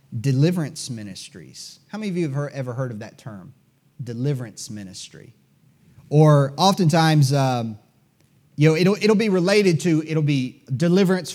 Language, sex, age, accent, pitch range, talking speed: English, male, 30-49, American, 130-160 Hz, 145 wpm